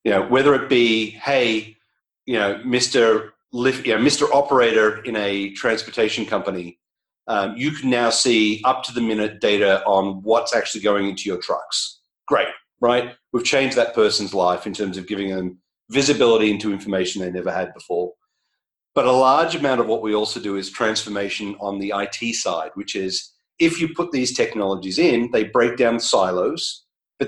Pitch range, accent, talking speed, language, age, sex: 100-125 Hz, Australian, 180 wpm, English, 40-59, male